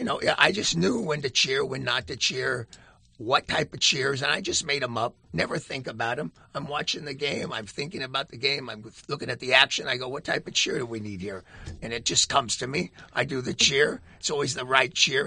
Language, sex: English, male